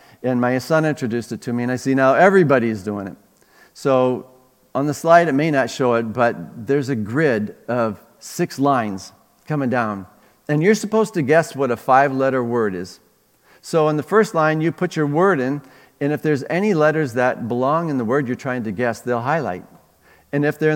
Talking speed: 205 wpm